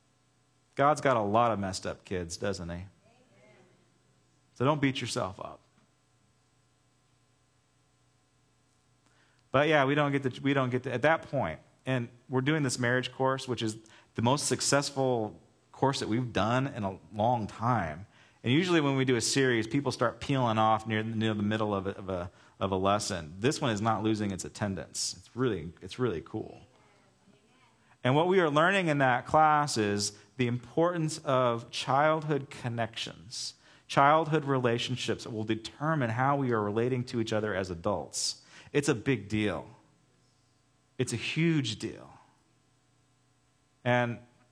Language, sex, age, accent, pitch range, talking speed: English, male, 40-59, American, 110-135 Hz, 165 wpm